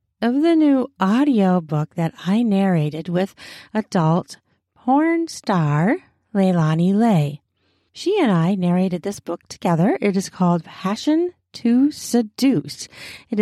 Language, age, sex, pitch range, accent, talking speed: English, 40-59, female, 165-215 Hz, American, 125 wpm